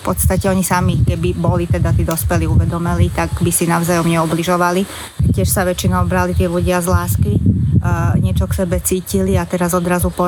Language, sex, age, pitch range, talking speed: Slovak, female, 20-39, 160-180 Hz, 180 wpm